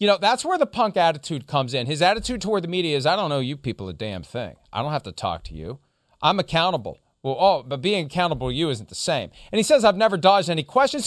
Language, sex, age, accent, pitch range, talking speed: English, male, 40-59, American, 160-210 Hz, 270 wpm